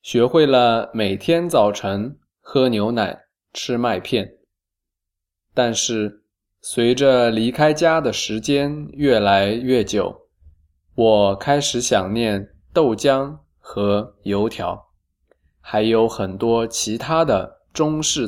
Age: 20-39